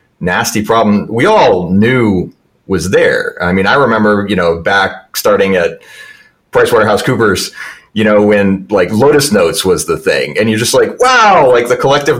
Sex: male